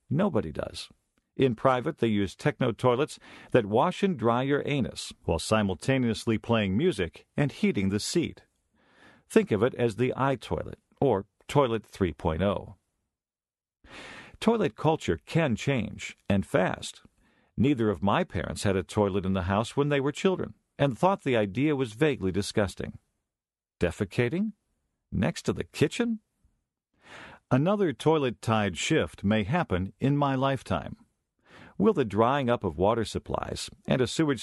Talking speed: 145 wpm